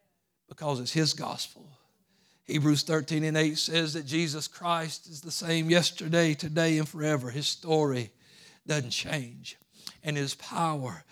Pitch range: 150-185 Hz